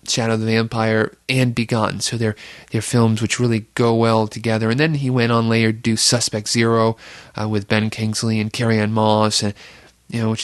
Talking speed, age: 215 wpm, 30-49